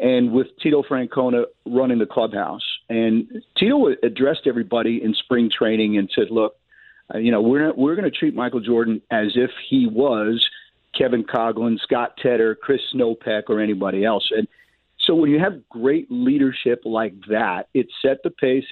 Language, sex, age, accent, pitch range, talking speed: English, male, 50-69, American, 110-145 Hz, 165 wpm